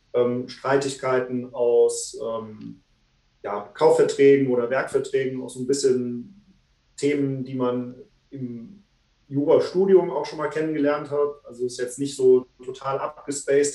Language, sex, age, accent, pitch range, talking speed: German, male, 40-59, German, 125-150 Hz, 130 wpm